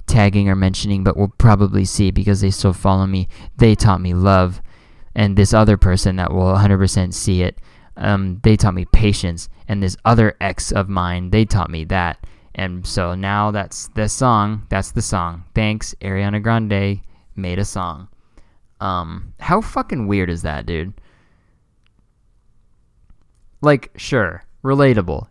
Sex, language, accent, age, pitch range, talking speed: male, English, American, 20-39, 90-110 Hz, 155 wpm